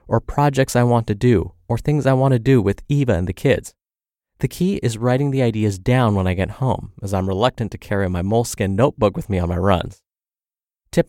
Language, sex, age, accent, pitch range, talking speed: English, male, 30-49, American, 95-130 Hz, 225 wpm